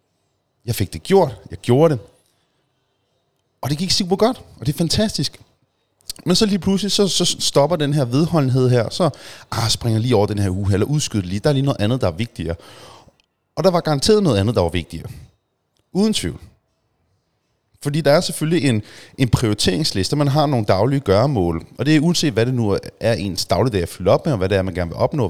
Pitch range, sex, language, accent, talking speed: 110-160 Hz, male, Danish, native, 220 wpm